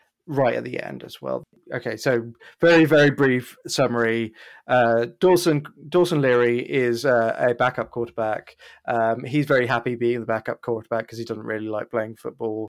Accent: British